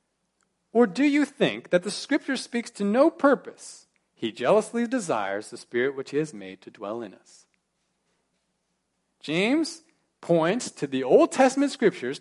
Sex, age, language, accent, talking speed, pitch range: male, 40-59, English, American, 150 wpm, 155-235 Hz